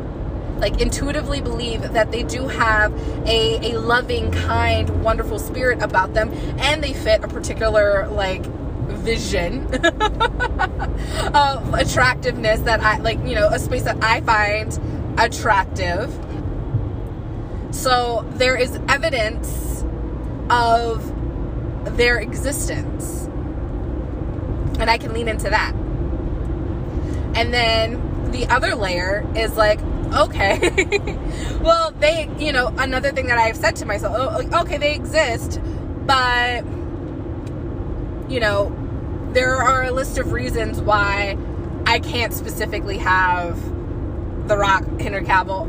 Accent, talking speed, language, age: American, 115 wpm, English, 20-39